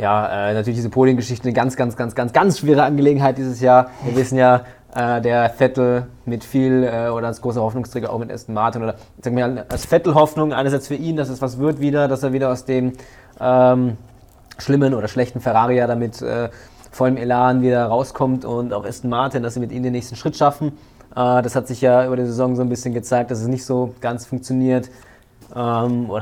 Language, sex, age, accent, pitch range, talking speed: German, male, 20-39, German, 120-130 Hz, 215 wpm